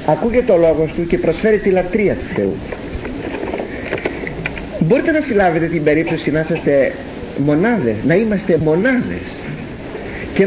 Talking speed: 125 wpm